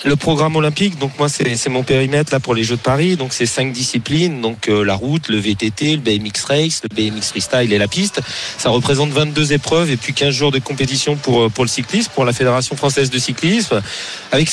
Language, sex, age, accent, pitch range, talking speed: French, male, 40-59, French, 120-150 Hz, 225 wpm